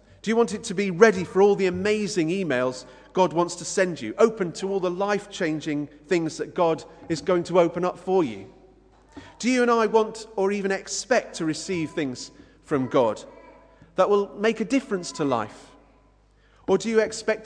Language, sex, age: English, male, 40-59